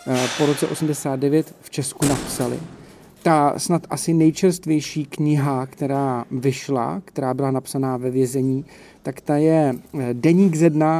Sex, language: male, Czech